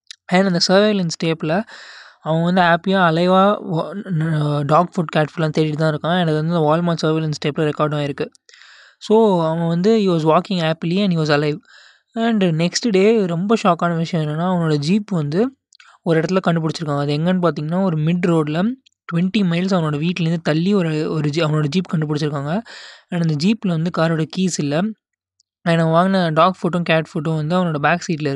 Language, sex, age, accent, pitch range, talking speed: Tamil, male, 20-39, native, 155-185 Hz, 170 wpm